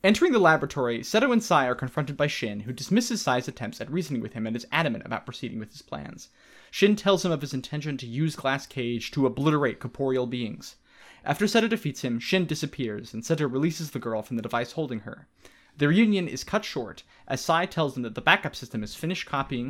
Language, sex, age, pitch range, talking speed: English, male, 20-39, 120-165 Hz, 220 wpm